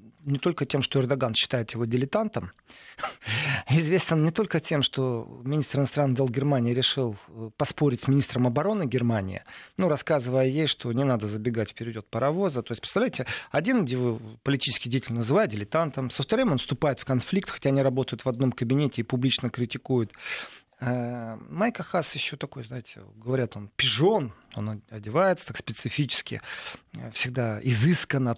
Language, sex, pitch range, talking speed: Russian, male, 125-165 Hz, 145 wpm